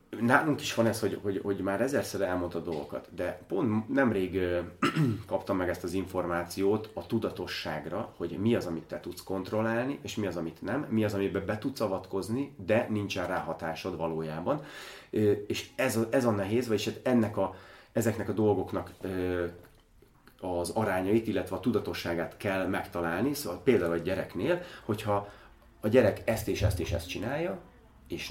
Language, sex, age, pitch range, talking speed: Hungarian, male, 30-49, 90-110 Hz, 175 wpm